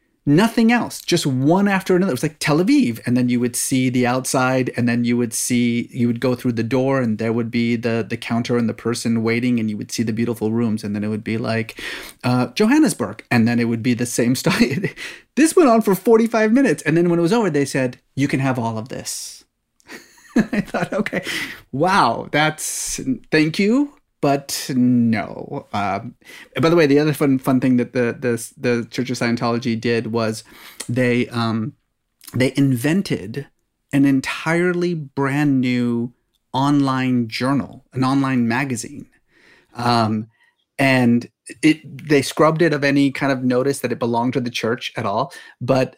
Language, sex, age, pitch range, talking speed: English, male, 30-49, 120-155 Hz, 185 wpm